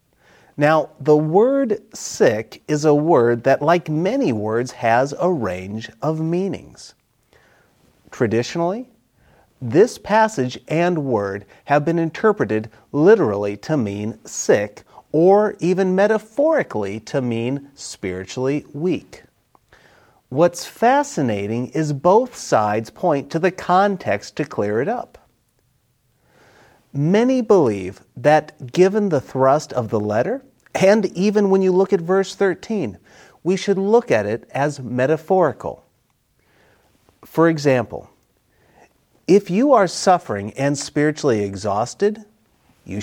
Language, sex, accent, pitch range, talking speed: English, male, American, 120-190 Hz, 115 wpm